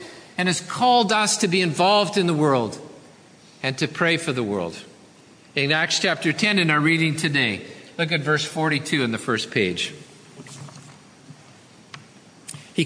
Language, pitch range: English, 145-195 Hz